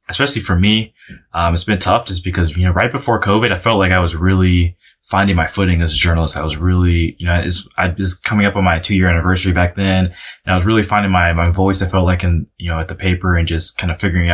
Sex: male